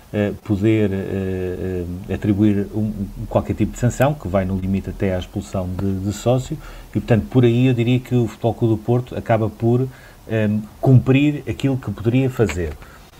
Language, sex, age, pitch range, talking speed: Portuguese, male, 50-69, 100-120 Hz, 175 wpm